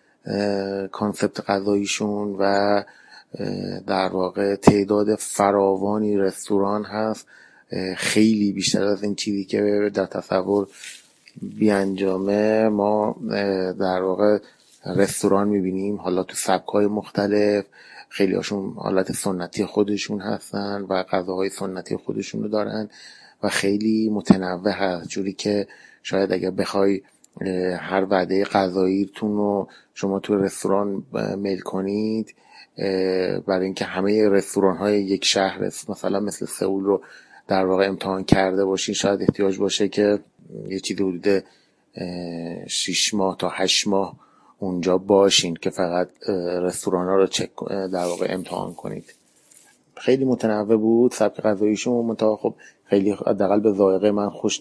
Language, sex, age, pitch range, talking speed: Persian, male, 30-49, 95-105 Hz, 120 wpm